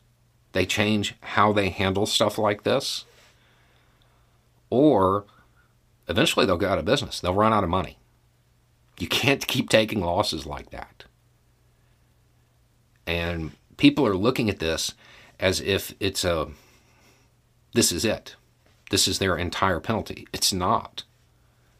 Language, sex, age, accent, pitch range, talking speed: English, male, 50-69, American, 95-120 Hz, 130 wpm